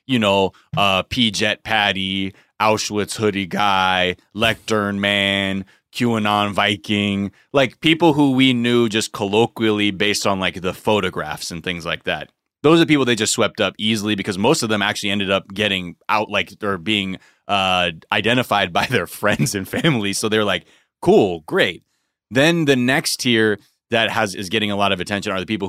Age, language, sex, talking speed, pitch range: 30-49, English, male, 175 wpm, 95-120 Hz